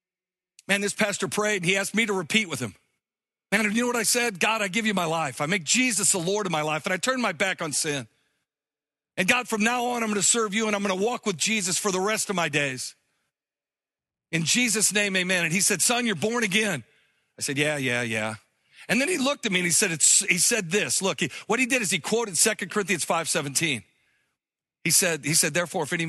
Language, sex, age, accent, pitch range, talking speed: English, male, 50-69, American, 150-210 Hz, 250 wpm